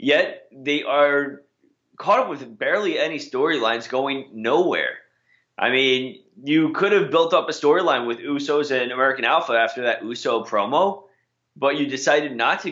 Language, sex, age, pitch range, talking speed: English, male, 20-39, 130-165 Hz, 160 wpm